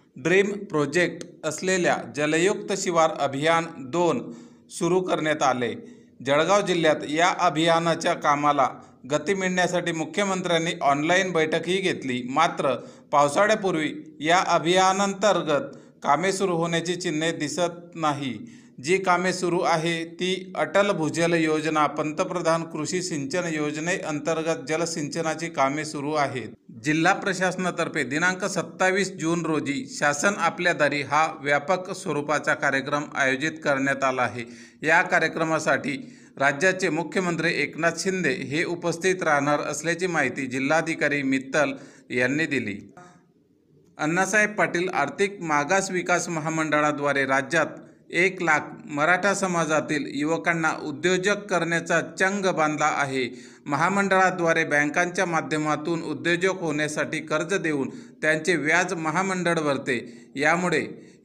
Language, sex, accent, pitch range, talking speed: Marathi, male, native, 150-180 Hz, 105 wpm